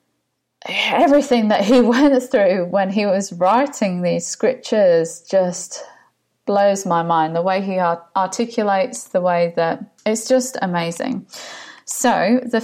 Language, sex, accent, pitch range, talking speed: English, female, British, 180-240 Hz, 130 wpm